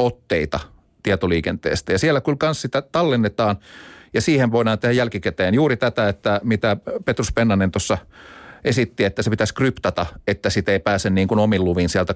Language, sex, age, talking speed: Finnish, male, 40-59, 165 wpm